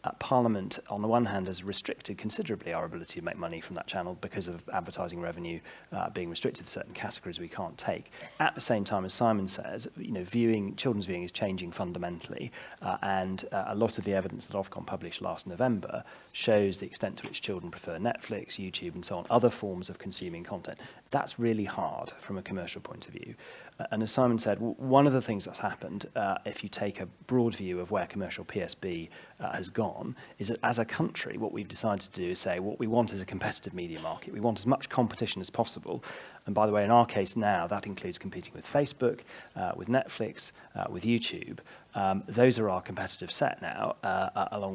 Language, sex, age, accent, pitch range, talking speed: English, male, 30-49, British, 95-120 Hz, 220 wpm